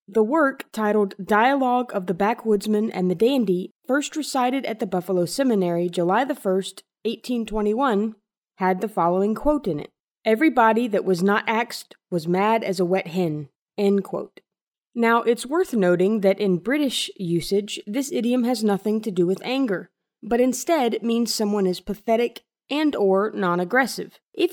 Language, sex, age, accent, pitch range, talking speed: English, female, 20-39, American, 190-260 Hz, 155 wpm